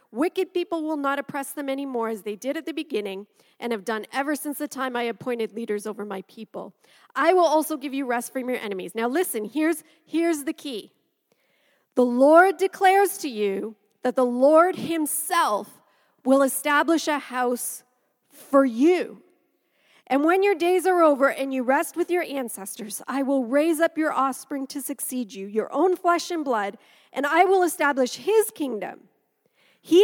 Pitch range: 240-310 Hz